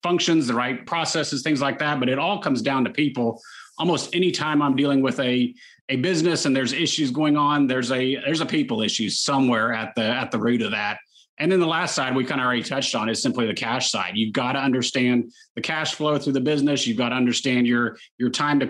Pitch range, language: 125-150 Hz, English